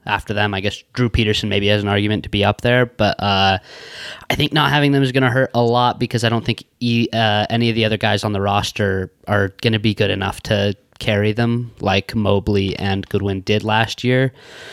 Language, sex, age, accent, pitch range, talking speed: English, male, 20-39, American, 100-120 Hz, 230 wpm